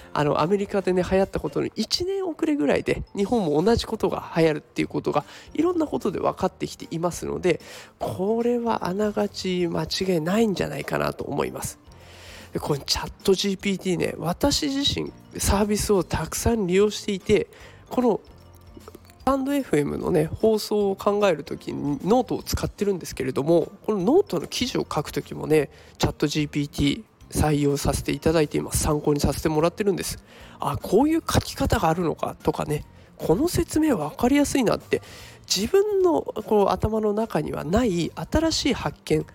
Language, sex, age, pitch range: Japanese, male, 20-39, 165-255 Hz